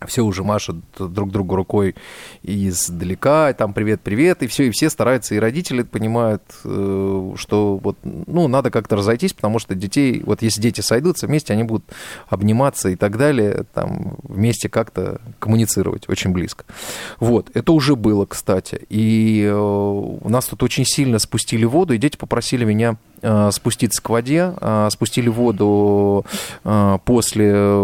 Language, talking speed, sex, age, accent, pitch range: Russian, 145 wpm, male, 20-39, native, 100-125 Hz